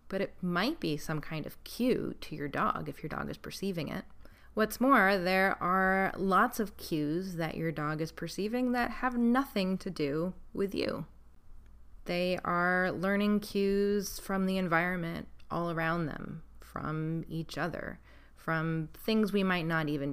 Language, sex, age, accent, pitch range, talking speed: English, female, 20-39, American, 155-190 Hz, 165 wpm